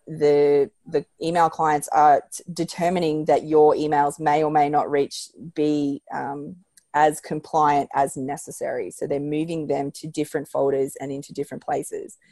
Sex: female